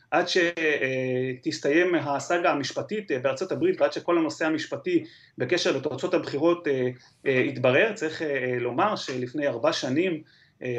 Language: Hebrew